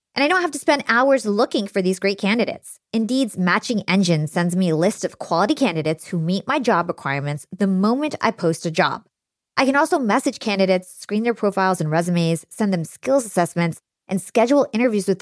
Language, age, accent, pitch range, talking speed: English, 30-49, American, 175-245 Hz, 200 wpm